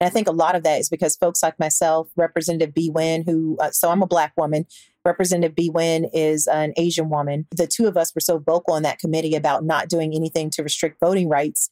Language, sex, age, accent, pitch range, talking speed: English, female, 40-59, American, 155-180 Hz, 240 wpm